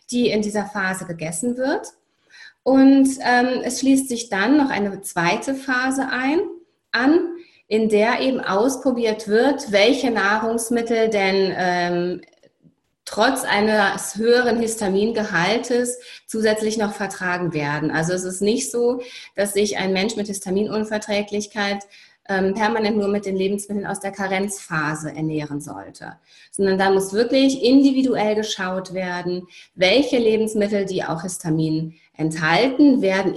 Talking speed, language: 125 wpm, German